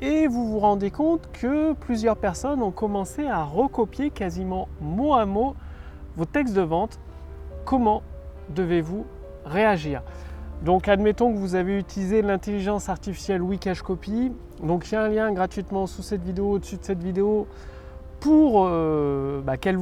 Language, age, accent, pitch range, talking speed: French, 30-49, French, 160-215 Hz, 150 wpm